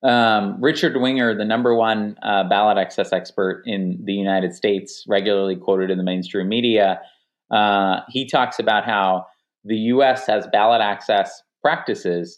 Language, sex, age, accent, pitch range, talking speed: English, male, 30-49, American, 100-130 Hz, 145 wpm